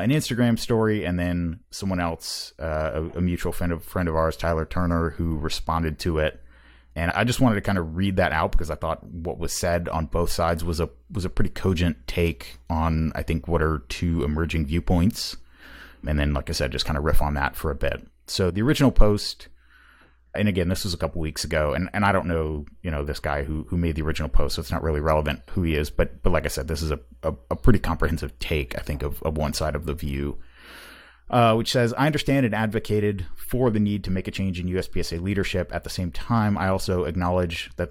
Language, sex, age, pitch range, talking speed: English, male, 30-49, 80-100 Hz, 240 wpm